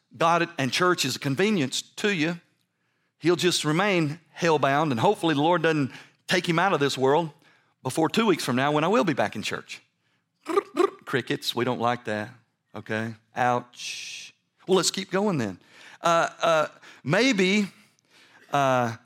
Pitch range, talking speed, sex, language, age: 120-170 Hz, 165 wpm, male, English, 40-59